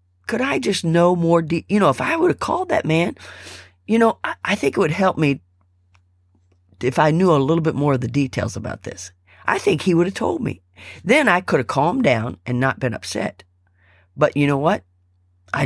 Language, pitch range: English, 95-150 Hz